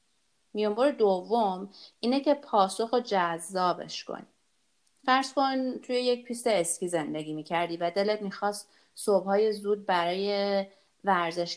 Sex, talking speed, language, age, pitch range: female, 125 wpm, Persian, 30-49, 175-220 Hz